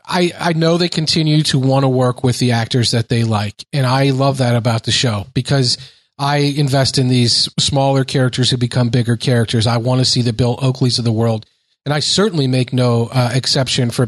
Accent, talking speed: American, 215 wpm